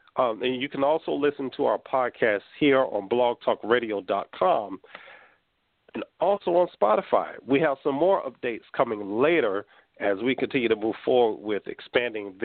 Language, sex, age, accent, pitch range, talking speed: English, male, 40-59, American, 115-140 Hz, 150 wpm